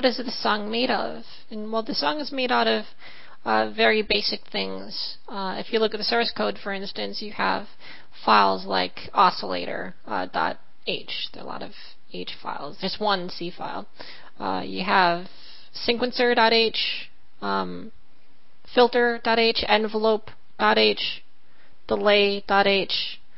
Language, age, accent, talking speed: English, 30-49, American, 130 wpm